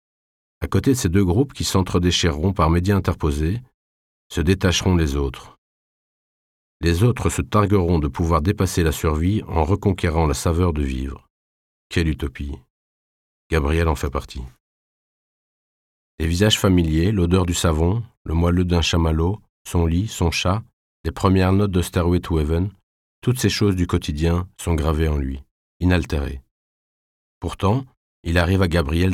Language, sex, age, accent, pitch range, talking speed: French, male, 40-59, French, 75-95 Hz, 145 wpm